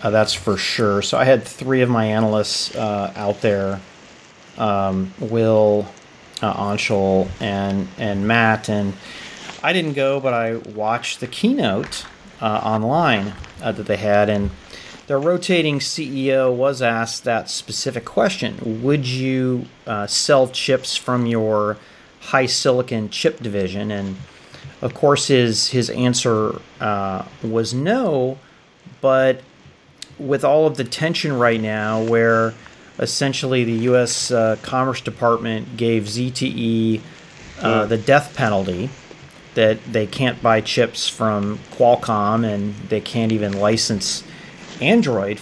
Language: English